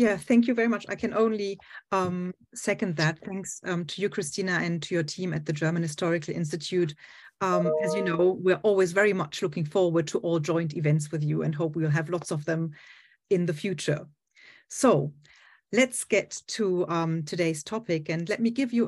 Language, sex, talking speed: English, female, 200 wpm